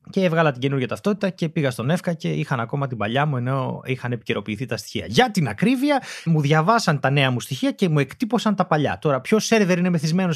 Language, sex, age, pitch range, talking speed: Greek, male, 30-49, 145-205 Hz, 225 wpm